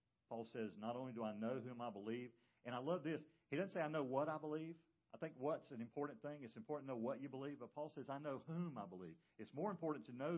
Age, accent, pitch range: 50-69, American, 110-165 Hz